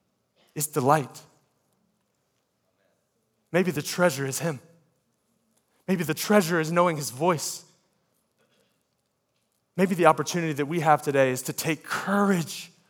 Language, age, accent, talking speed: English, 30-49, American, 115 wpm